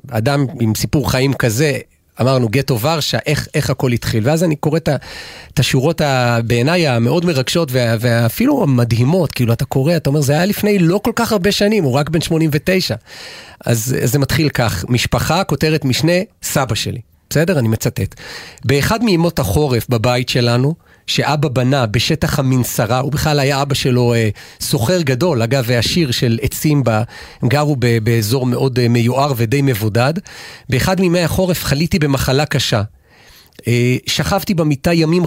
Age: 40-59